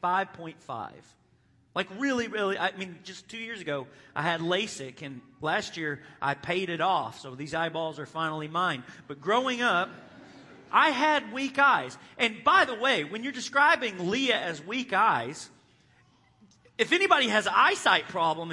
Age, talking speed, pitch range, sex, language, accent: 40-59, 160 wpm, 130-200 Hz, male, English, American